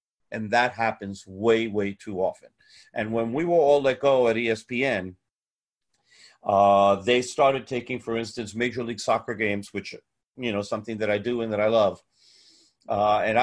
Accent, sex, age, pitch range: American, male, 50-69, 105-125 Hz